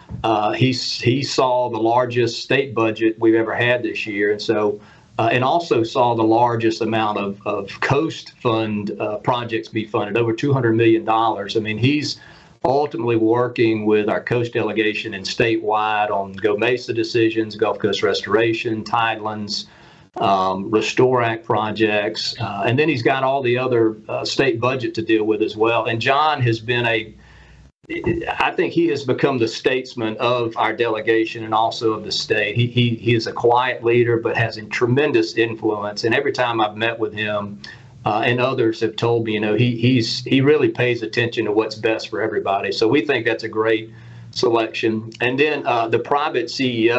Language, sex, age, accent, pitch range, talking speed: English, male, 40-59, American, 110-120 Hz, 185 wpm